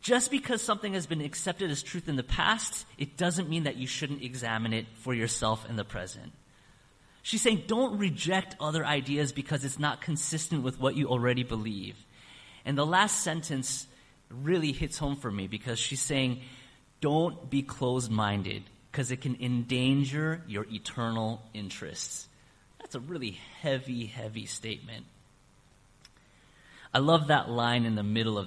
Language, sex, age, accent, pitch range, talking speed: English, male, 30-49, American, 110-150 Hz, 160 wpm